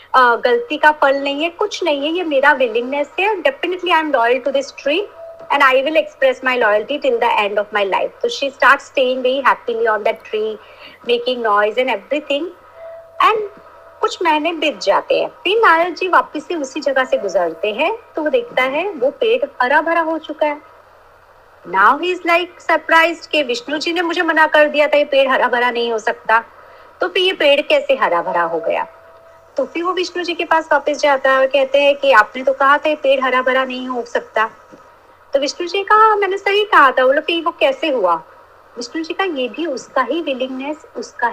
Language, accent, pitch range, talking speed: Hindi, native, 265-355 Hz, 155 wpm